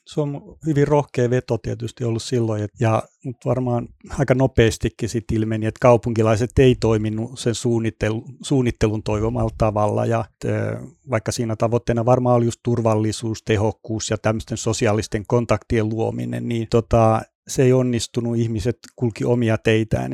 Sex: male